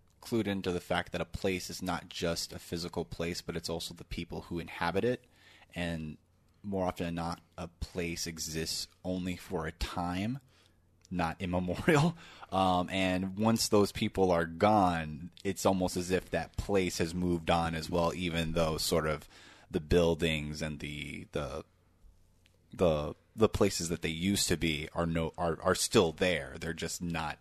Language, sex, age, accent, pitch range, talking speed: English, male, 20-39, American, 85-95 Hz, 175 wpm